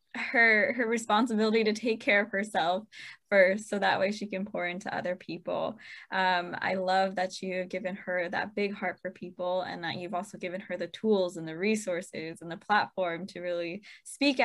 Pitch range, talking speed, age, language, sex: 180-200 Hz, 200 wpm, 10-29, English, female